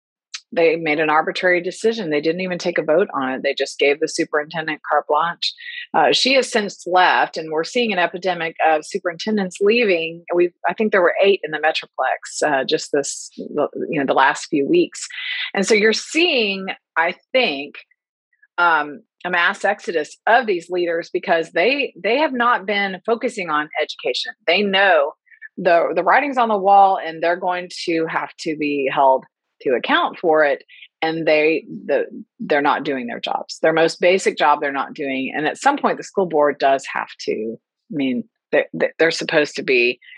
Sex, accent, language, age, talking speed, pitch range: female, American, English, 30-49, 185 wpm, 160-240 Hz